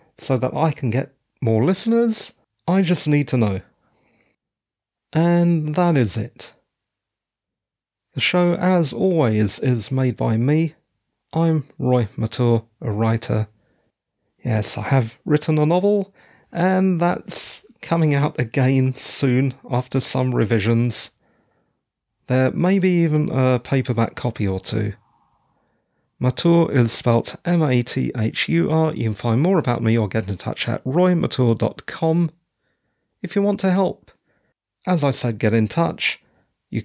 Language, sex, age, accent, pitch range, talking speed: English, male, 30-49, British, 115-175 Hz, 130 wpm